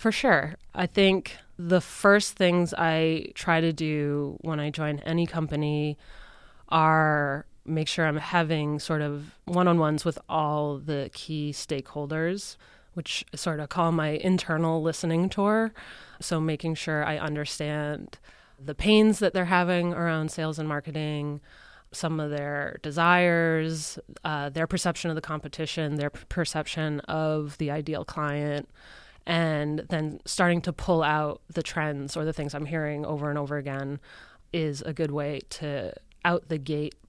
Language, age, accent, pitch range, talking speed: English, 20-39, American, 150-170 Hz, 150 wpm